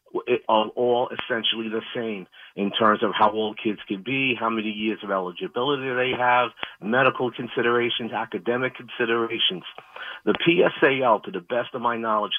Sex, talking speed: male, 155 wpm